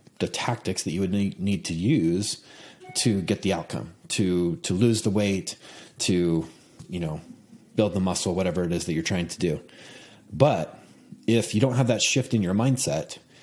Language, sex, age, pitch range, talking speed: English, male, 30-49, 95-120 Hz, 185 wpm